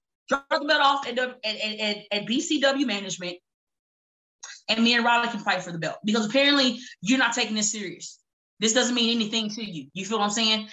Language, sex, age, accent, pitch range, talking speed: English, female, 20-39, American, 225-295 Hz, 205 wpm